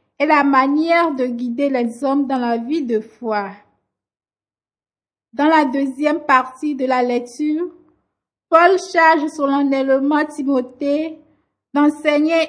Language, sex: French, female